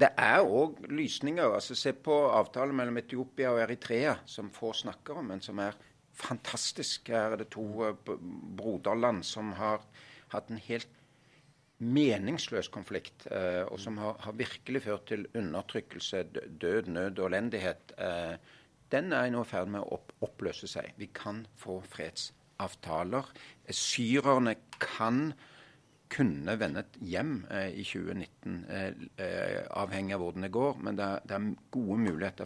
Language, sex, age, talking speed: English, male, 50-69, 140 wpm